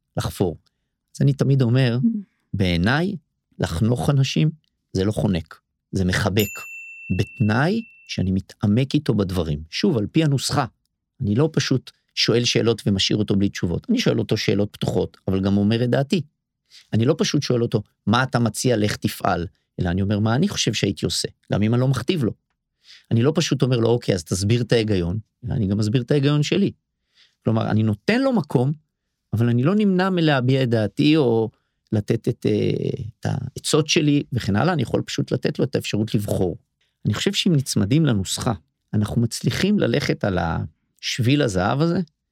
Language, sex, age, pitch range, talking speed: Hebrew, male, 50-69, 100-145 Hz, 160 wpm